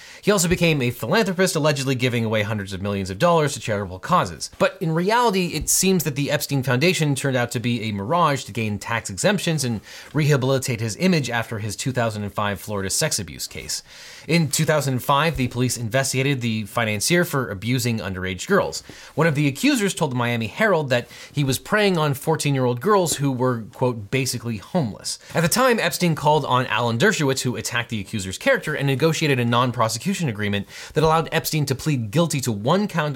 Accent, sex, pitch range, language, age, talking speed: American, male, 115-160 Hz, English, 30-49, 190 wpm